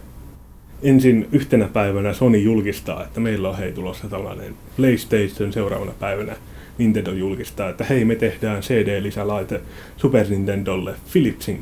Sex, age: male, 30-49